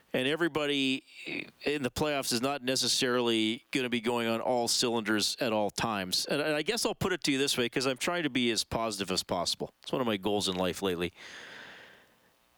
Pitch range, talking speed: 120-160 Hz, 215 wpm